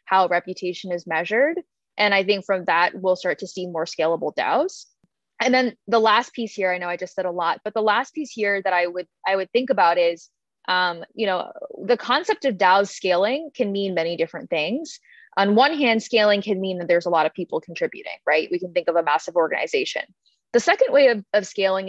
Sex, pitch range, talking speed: female, 170-230 Hz, 220 wpm